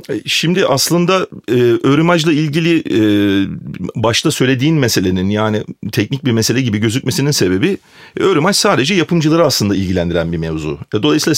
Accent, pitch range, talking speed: native, 105-160 Hz, 135 wpm